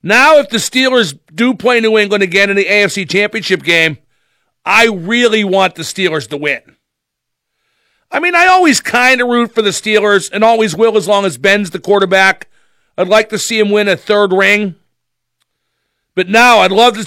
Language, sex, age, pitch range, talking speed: English, male, 50-69, 190-225 Hz, 190 wpm